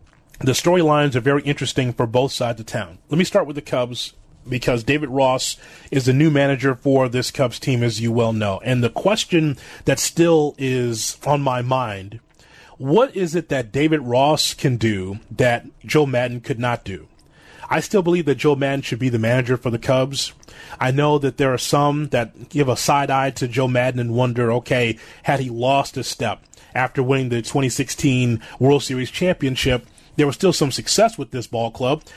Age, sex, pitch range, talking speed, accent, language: 30-49, male, 125-150 Hz, 195 wpm, American, English